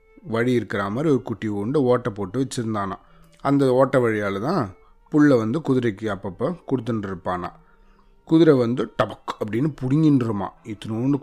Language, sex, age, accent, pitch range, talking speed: Tamil, male, 30-49, native, 105-135 Hz, 130 wpm